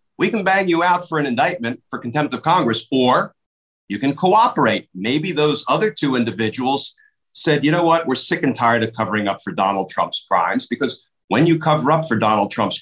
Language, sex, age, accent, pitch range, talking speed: English, male, 50-69, American, 115-165 Hz, 205 wpm